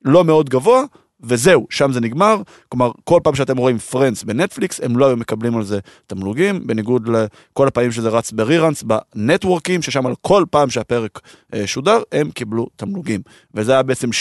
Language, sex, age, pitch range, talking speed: Hebrew, male, 20-39, 115-165 Hz, 165 wpm